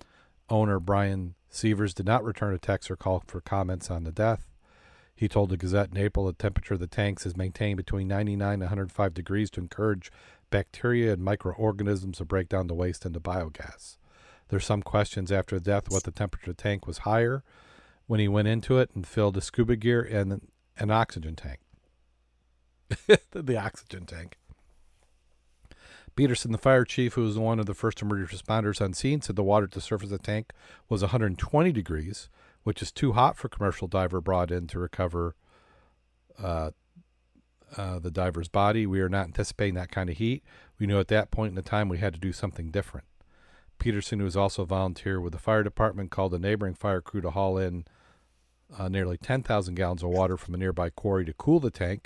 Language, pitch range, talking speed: English, 90-105 Hz, 195 wpm